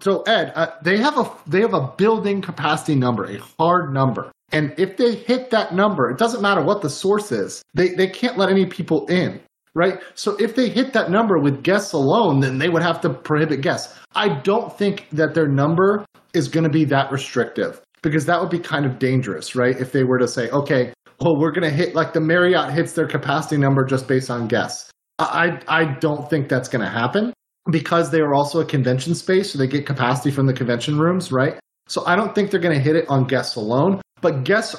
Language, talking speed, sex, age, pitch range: English, 225 wpm, male, 30-49, 145-185 Hz